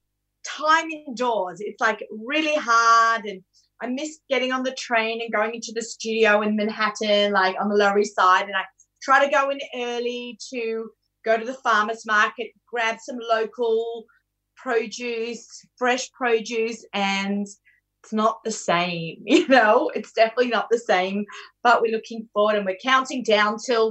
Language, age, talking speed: English, 30-49, 165 wpm